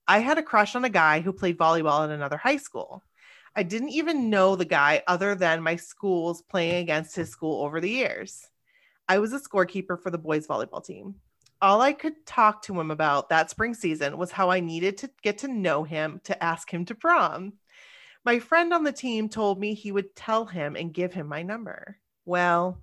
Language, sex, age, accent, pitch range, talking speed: English, female, 30-49, American, 170-215 Hz, 215 wpm